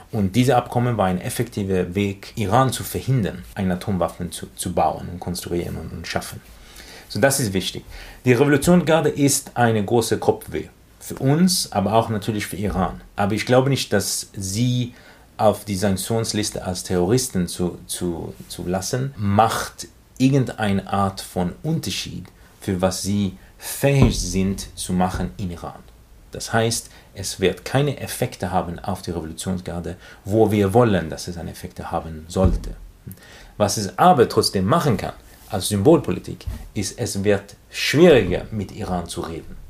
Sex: male